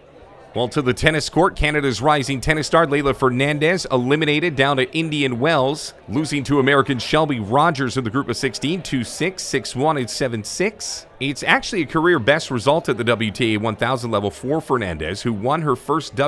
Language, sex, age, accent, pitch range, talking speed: English, male, 40-59, American, 125-160 Hz, 175 wpm